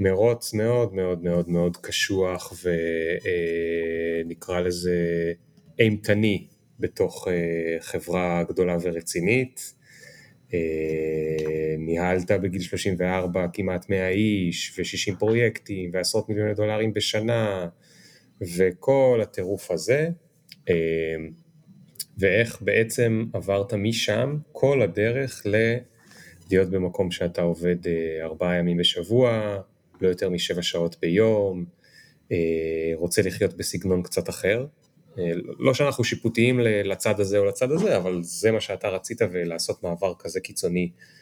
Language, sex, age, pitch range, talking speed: Hebrew, male, 30-49, 85-110 Hz, 105 wpm